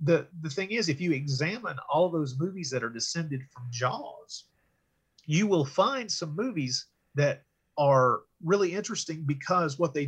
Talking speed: 160 wpm